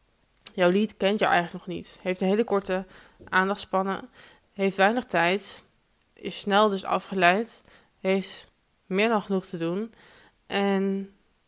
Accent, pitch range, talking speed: Dutch, 180-205 Hz, 135 wpm